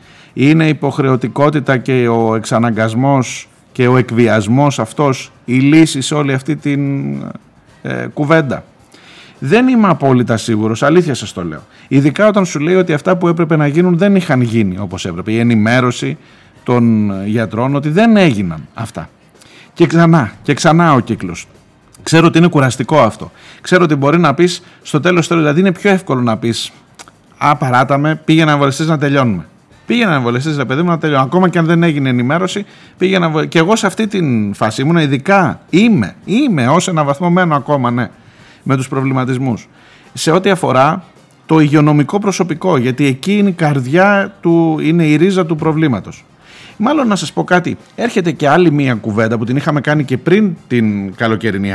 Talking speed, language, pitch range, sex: 175 wpm, Greek, 120-170 Hz, male